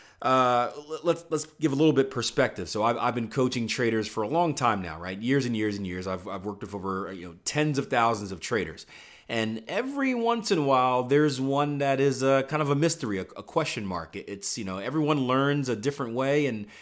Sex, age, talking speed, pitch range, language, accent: male, 30-49, 230 wpm, 100-140 Hz, English, American